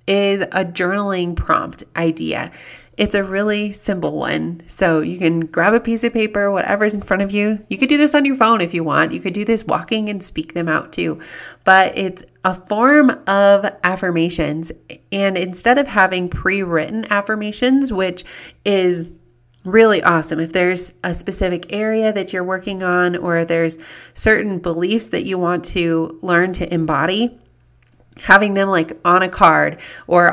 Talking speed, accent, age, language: 170 wpm, American, 30-49, English